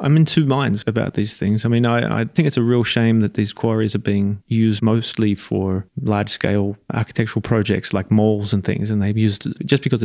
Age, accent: 30-49, Australian